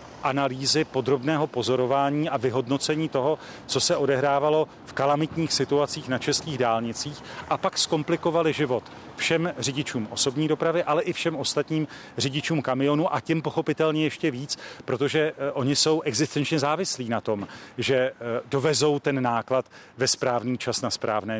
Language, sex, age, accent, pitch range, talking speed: Czech, male, 40-59, native, 125-150 Hz, 140 wpm